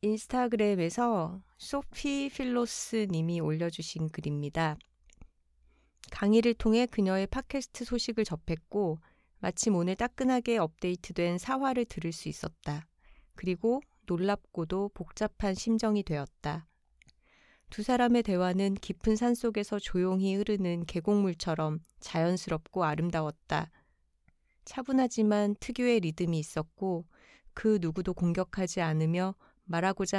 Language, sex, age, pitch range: Korean, female, 30-49, 160-220 Hz